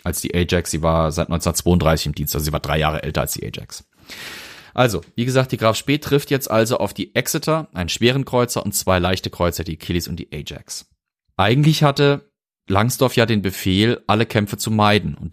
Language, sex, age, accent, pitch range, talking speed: German, male, 30-49, German, 90-115 Hz, 210 wpm